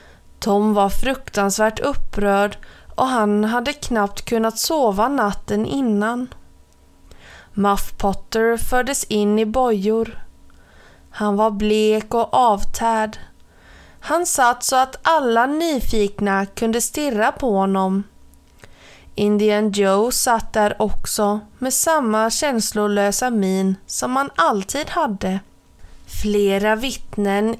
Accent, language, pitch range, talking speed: native, Swedish, 200-240 Hz, 105 wpm